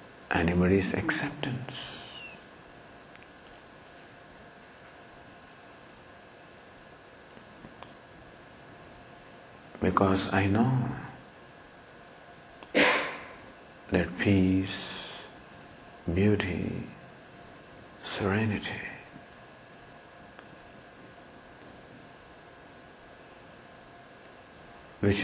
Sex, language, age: male, English, 60-79